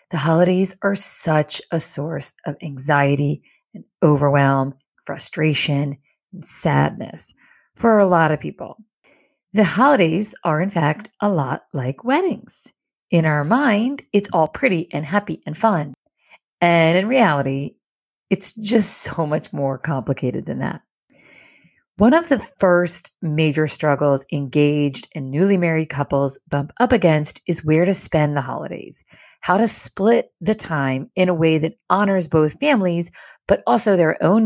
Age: 40-59